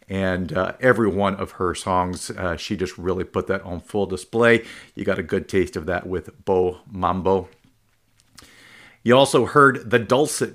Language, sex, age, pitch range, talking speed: English, male, 50-69, 95-120 Hz, 175 wpm